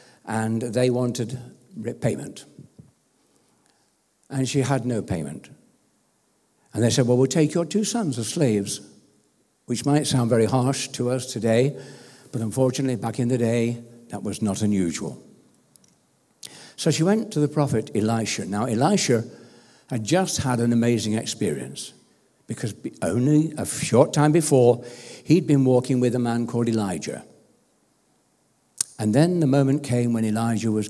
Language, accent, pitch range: English, British, 110-135 Hz